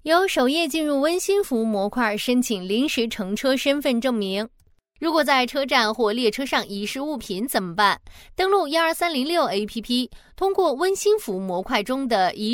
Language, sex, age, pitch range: Chinese, female, 20-39, 215-315 Hz